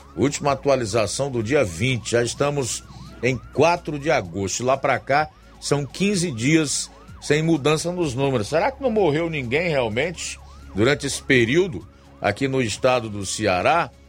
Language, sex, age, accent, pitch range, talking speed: Portuguese, male, 50-69, Brazilian, 110-170 Hz, 150 wpm